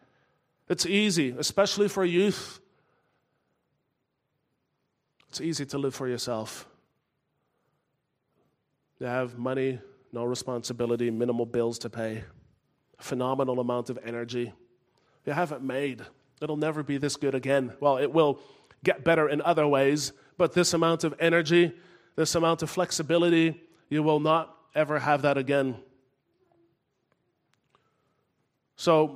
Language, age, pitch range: English, 30-49, 130-165 Hz